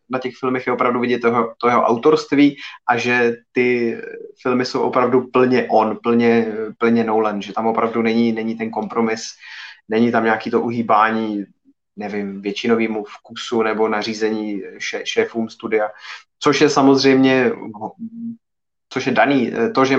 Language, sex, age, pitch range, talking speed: Czech, male, 20-39, 115-135 Hz, 145 wpm